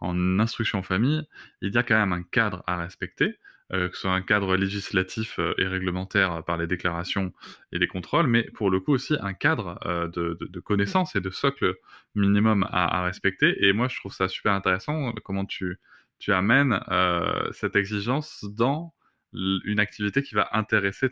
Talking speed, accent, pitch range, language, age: 190 wpm, French, 95-120 Hz, French, 20-39